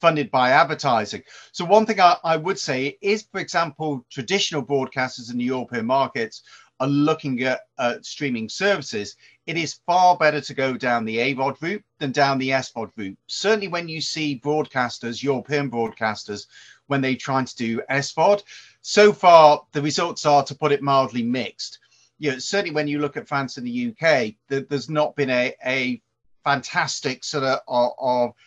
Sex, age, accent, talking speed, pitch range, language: male, 40-59, British, 175 wpm, 125-165 Hz, English